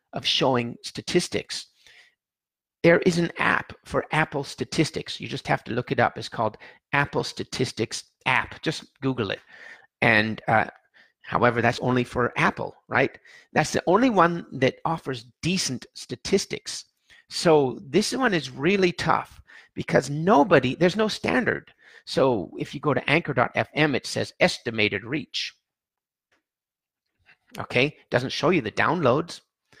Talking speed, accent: 135 wpm, American